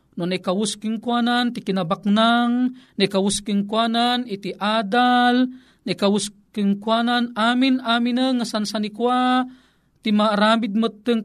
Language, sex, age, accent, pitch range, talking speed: Filipino, male, 40-59, native, 185-240 Hz, 100 wpm